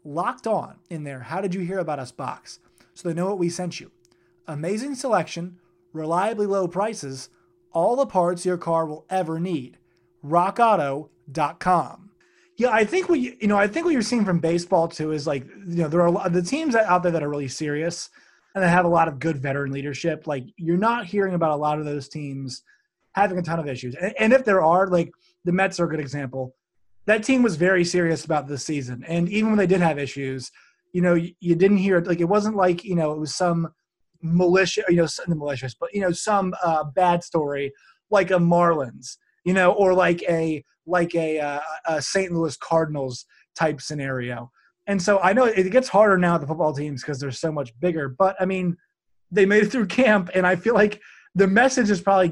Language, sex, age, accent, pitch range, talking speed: English, male, 30-49, American, 155-195 Hz, 215 wpm